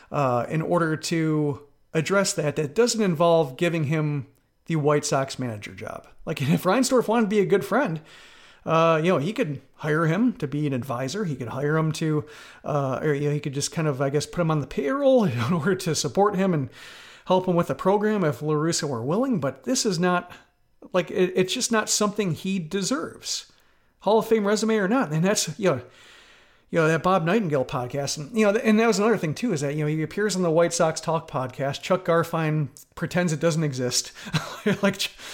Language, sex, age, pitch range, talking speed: English, male, 40-59, 150-200 Hz, 215 wpm